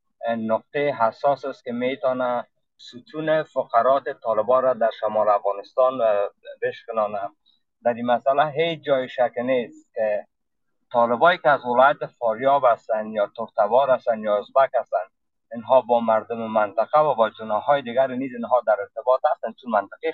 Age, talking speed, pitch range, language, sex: 50-69, 145 wpm, 115-150 Hz, Persian, male